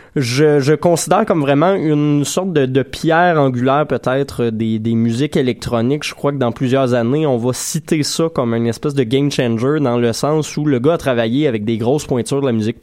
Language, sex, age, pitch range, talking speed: French, male, 20-39, 120-150 Hz, 220 wpm